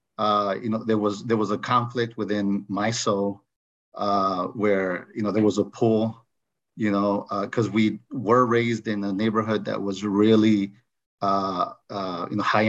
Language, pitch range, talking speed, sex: English, 100-110 Hz, 180 wpm, male